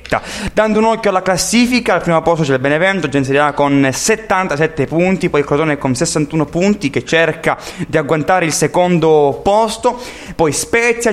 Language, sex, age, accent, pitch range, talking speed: Italian, male, 20-39, native, 150-195 Hz, 155 wpm